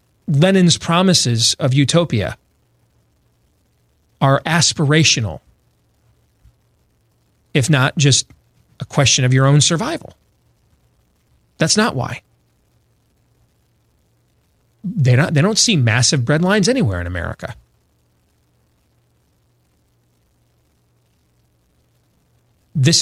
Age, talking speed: 40-59, 80 wpm